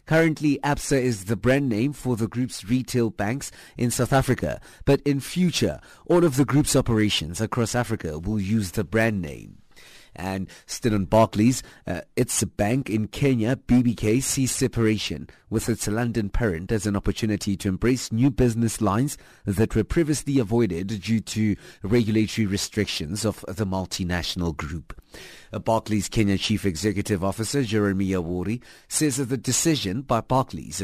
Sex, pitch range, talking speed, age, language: male, 100-125 Hz, 150 wpm, 30-49, English